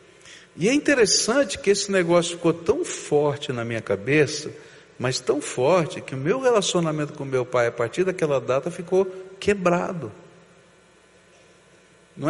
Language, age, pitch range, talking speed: Portuguese, 60-79, 165-210 Hz, 140 wpm